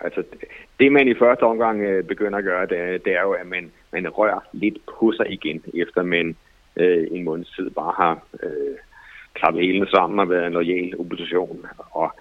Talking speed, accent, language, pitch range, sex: 200 wpm, Danish, English, 90-135 Hz, male